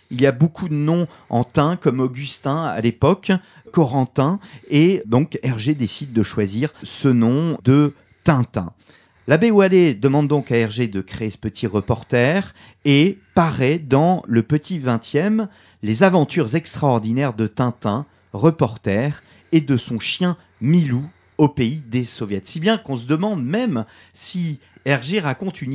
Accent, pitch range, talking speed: French, 120-170 Hz, 150 wpm